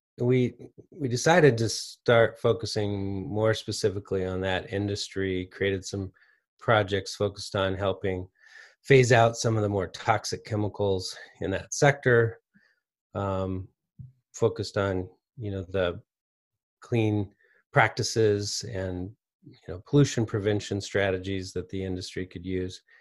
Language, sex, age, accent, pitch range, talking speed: English, male, 30-49, American, 100-125 Hz, 125 wpm